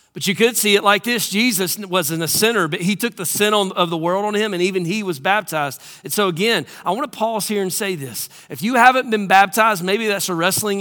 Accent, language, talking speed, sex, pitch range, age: American, English, 250 wpm, male, 180-215 Hz, 40-59